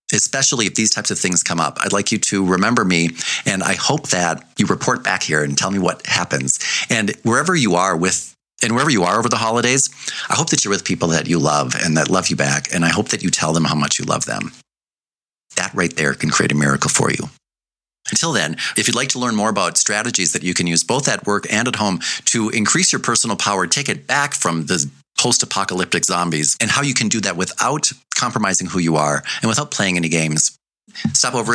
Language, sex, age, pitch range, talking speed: English, male, 40-59, 80-115 Hz, 235 wpm